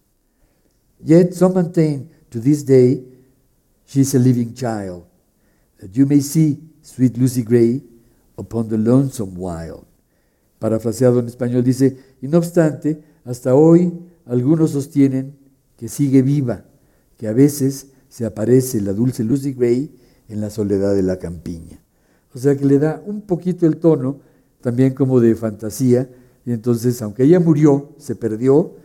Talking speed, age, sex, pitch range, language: 145 wpm, 60-79, male, 115-145 Hz, Spanish